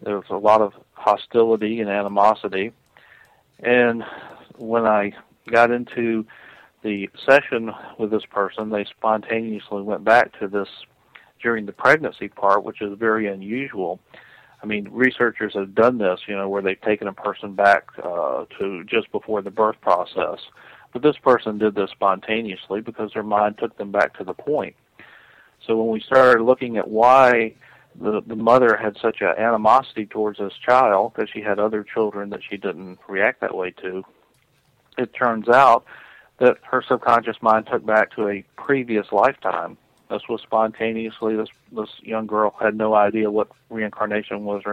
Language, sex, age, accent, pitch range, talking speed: English, male, 40-59, American, 100-115 Hz, 165 wpm